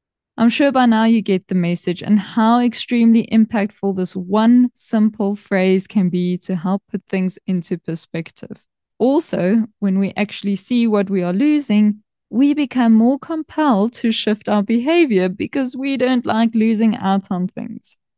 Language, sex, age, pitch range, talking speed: English, female, 20-39, 190-230 Hz, 160 wpm